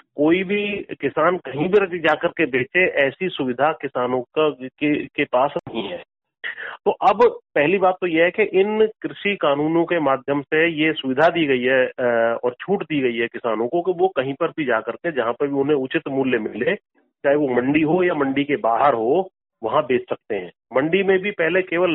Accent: native